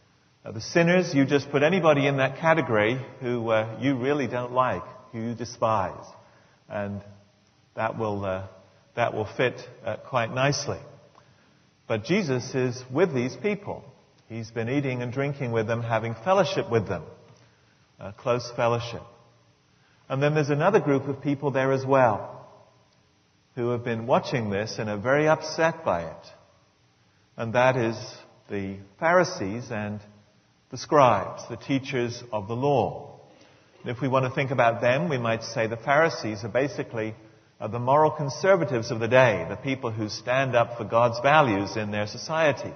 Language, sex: English, male